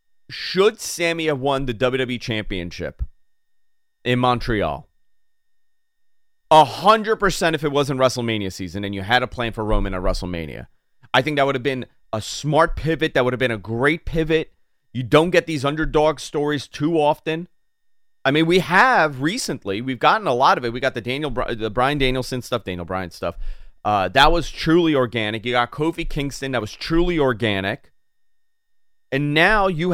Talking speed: 175 wpm